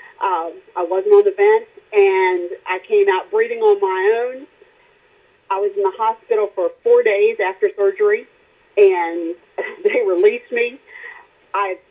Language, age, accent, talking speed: English, 40-59, American, 145 wpm